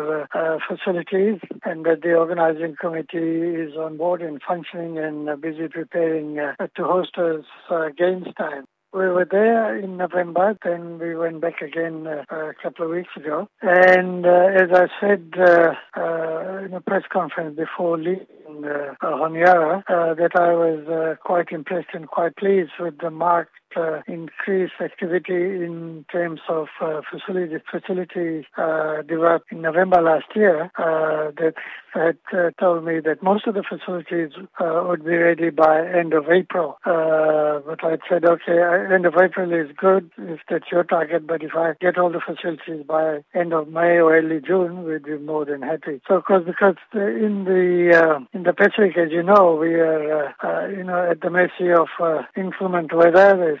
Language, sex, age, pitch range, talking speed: English, male, 60-79, 160-180 Hz, 185 wpm